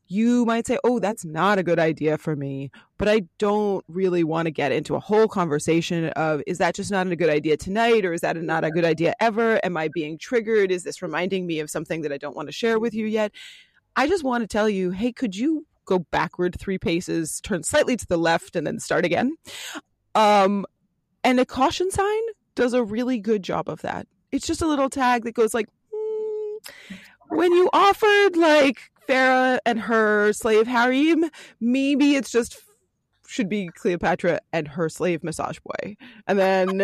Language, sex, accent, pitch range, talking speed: English, female, American, 185-270 Hz, 200 wpm